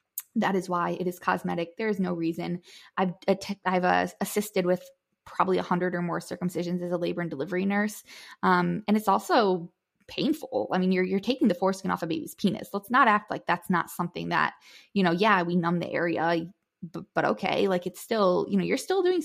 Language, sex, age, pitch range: English, female, 20-39, 175-205 Hz